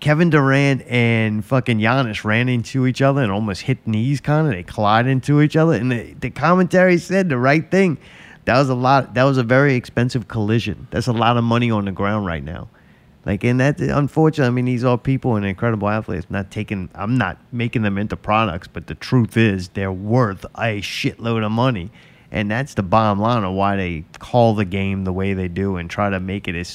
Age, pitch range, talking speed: 30-49, 100-135 Hz, 220 wpm